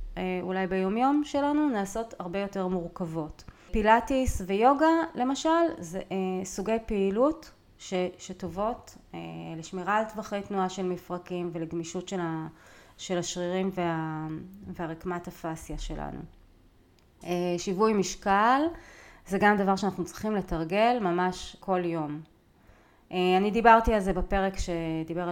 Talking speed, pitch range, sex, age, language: 120 wpm, 175-225 Hz, female, 30-49, Hebrew